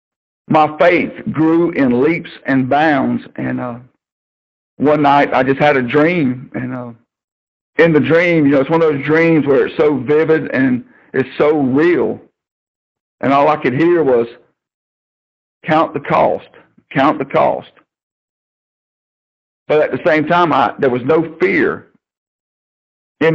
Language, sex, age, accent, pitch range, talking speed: English, male, 50-69, American, 130-165 Hz, 150 wpm